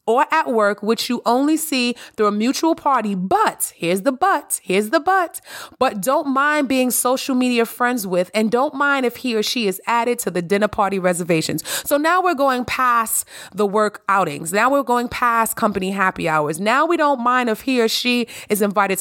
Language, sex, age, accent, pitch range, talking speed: English, female, 30-49, American, 195-265 Hz, 200 wpm